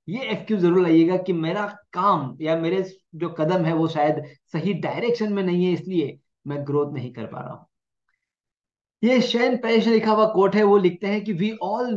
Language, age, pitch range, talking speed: Hindi, 20-39, 160-225 Hz, 200 wpm